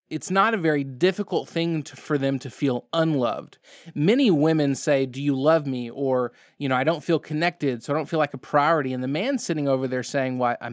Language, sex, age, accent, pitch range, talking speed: English, male, 20-39, American, 130-170 Hz, 230 wpm